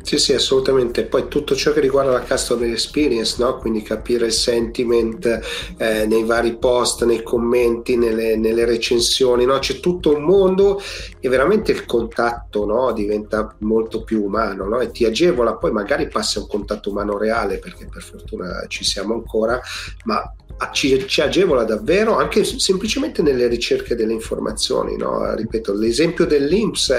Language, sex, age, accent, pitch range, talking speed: Italian, male, 40-59, native, 110-135 Hz, 160 wpm